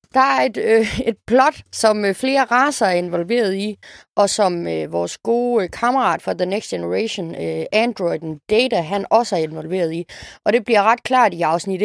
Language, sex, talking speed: Danish, female, 195 wpm